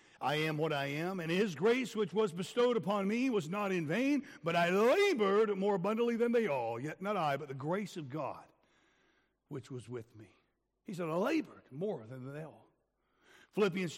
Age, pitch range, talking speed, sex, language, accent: 60-79, 175-245 Hz, 200 wpm, male, English, American